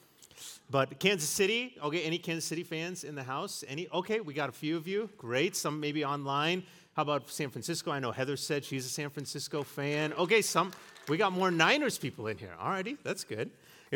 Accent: American